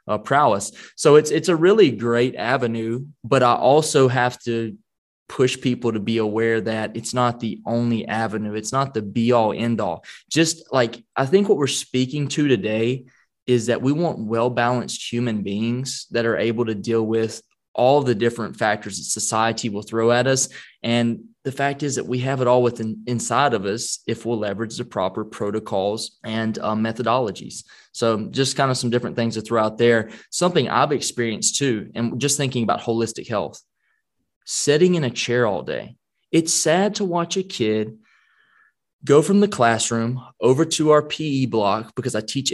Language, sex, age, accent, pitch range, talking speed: English, male, 20-39, American, 115-140 Hz, 190 wpm